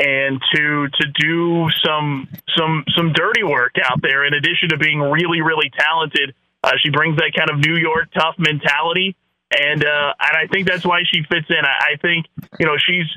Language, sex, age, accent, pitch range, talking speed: English, male, 30-49, American, 155-180 Hz, 200 wpm